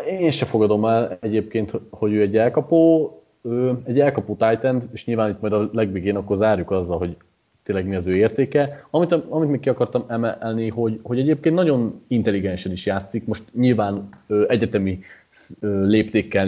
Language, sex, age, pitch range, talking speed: Hungarian, male, 20-39, 95-115 Hz, 155 wpm